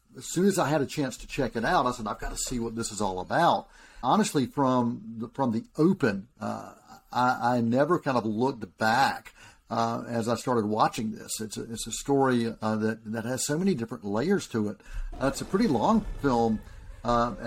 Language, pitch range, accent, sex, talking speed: English, 110-140 Hz, American, male, 220 wpm